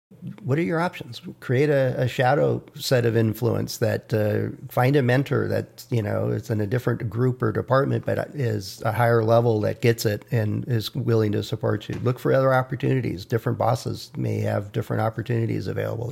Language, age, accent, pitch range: English, 50-69, American, 115-135 Hz